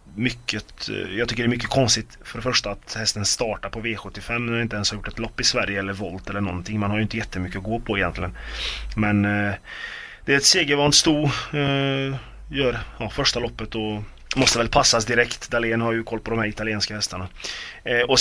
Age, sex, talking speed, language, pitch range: 30-49, male, 210 wpm, Swedish, 105-120 Hz